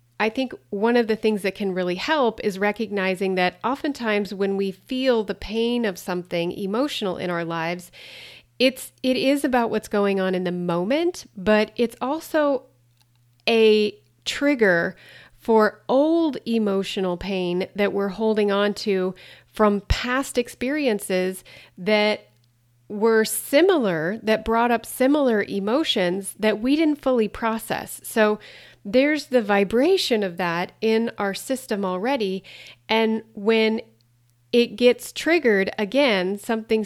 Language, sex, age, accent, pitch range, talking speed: English, female, 30-49, American, 190-240 Hz, 135 wpm